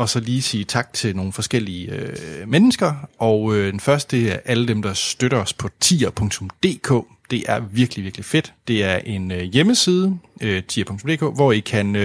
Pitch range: 105-135 Hz